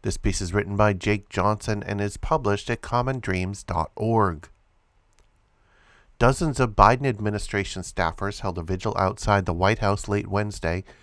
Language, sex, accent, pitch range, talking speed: English, male, American, 95-110 Hz, 140 wpm